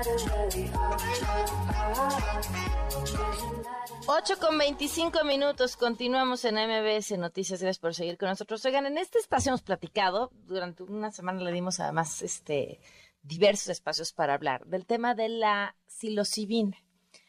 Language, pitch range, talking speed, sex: Spanish, 175-230 Hz, 120 wpm, female